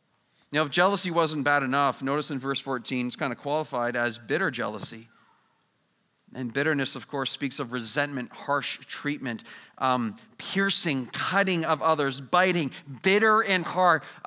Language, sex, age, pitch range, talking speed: English, male, 40-59, 165-215 Hz, 145 wpm